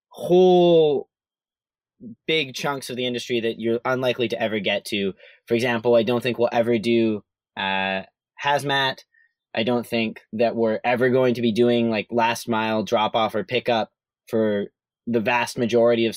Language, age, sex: English, 20-39, male